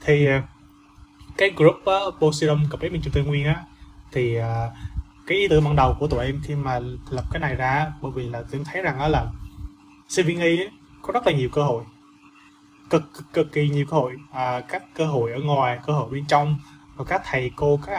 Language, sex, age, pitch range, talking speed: Vietnamese, male, 20-39, 130-155 Hz, 225 wpm